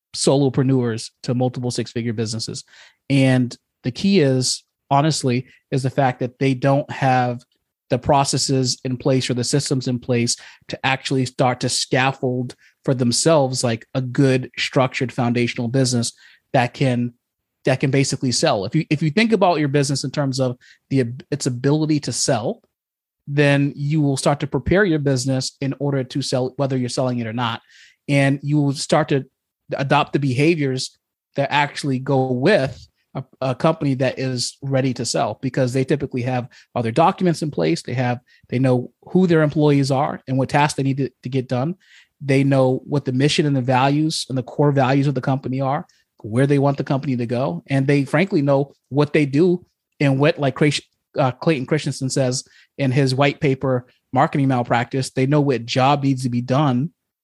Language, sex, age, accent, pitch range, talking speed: English, male, 30-49, American, 125-145 Hz, 185 wpm